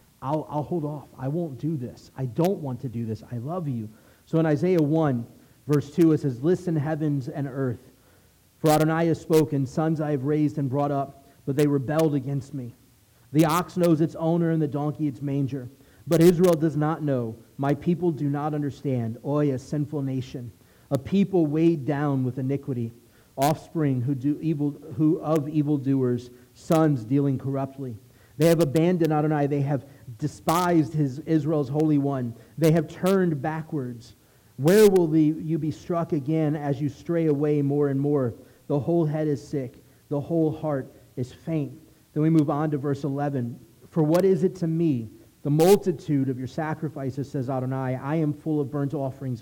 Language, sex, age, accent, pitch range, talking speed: English, male, 40-59, American, 135-160 Hz, 180 wpm